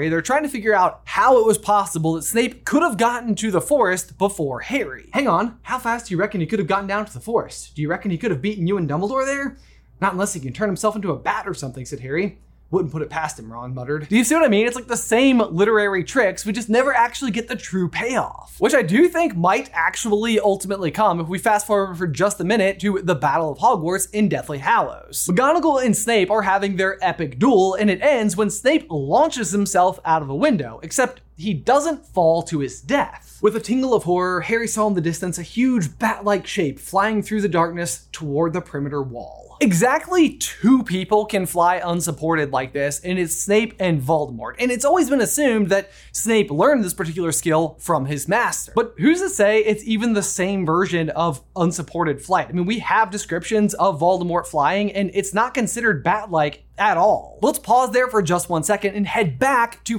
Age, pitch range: 20-39, 170-225 Hz